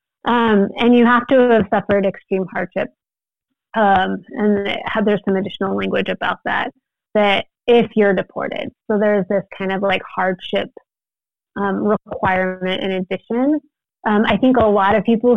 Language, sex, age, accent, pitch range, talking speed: English, female, 30-49, American, 190-220 Hz, 150 wpm